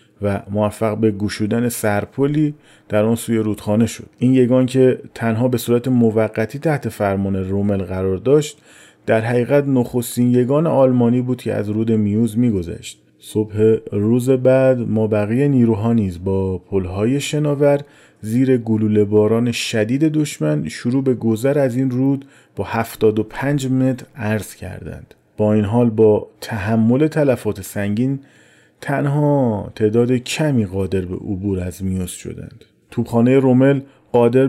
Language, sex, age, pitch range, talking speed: Persian, male, 40-59, 105-130 Hz, 140 wpm